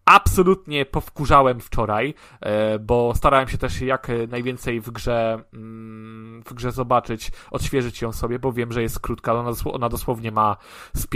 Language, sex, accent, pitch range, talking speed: Polish, male, native, 115-140 Hz, 145 wpm